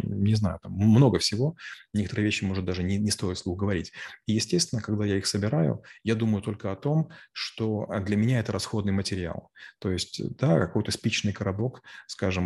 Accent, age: native, 20-39